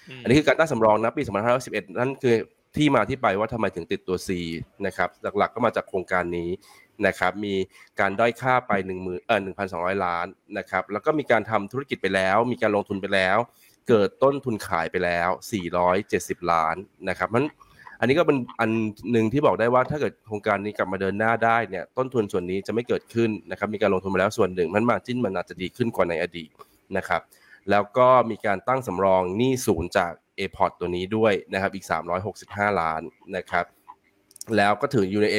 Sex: male